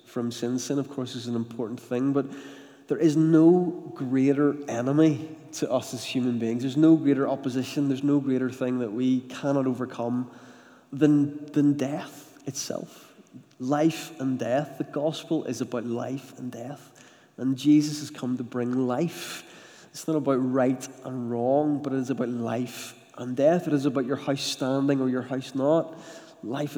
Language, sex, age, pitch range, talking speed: English, male, 20-39, 120-145 Hz, 175 wpm